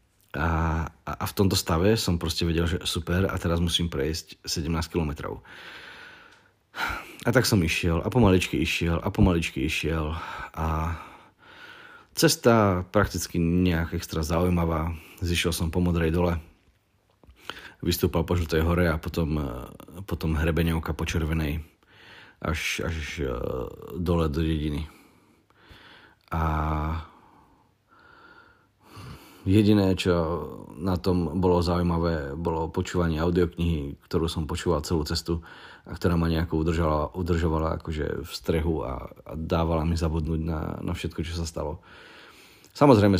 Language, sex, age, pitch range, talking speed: Slovak, male, 40-59, 80-90 Hz, 120 wpm